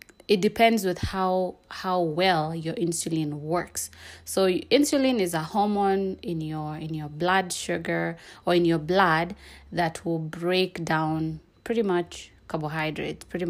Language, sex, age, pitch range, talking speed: English, female, 20-39, 160-185 Hz, 140 wpm